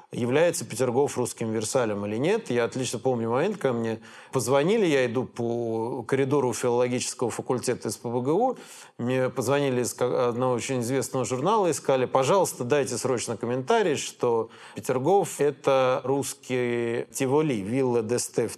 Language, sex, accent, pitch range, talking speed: Russian, male, native, 120-145 Hz, 130 wpm